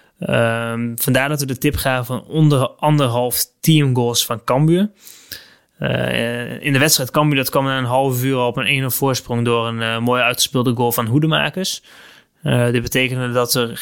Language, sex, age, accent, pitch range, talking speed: Dutch, male, 20-39, Dutch, 125-145 Hz, 180 wpm